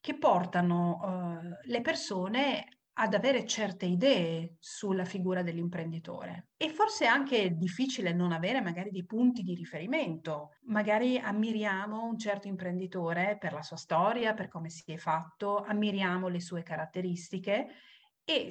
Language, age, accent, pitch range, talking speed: Italian, 40-59, native, 170-230 Hz, 135 wpm